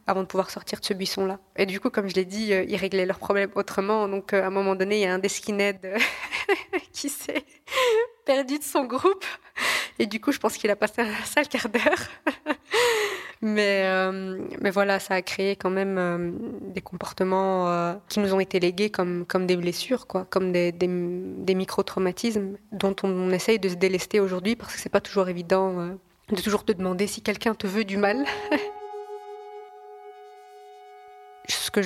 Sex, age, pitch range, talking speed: female, 20-39, 190-225 Hz, 200 wpm